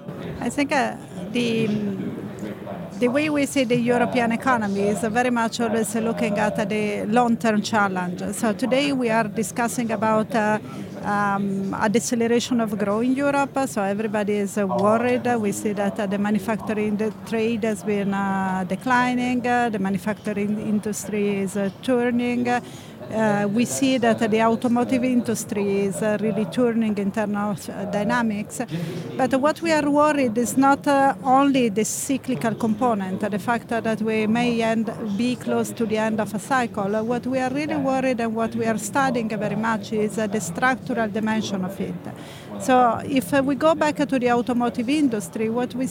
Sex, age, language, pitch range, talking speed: female, 40-59, Finnish, 210-250 Hz, 155 wpm